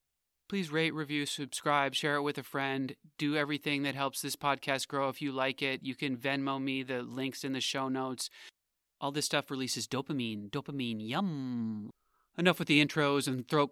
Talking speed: 190 wpm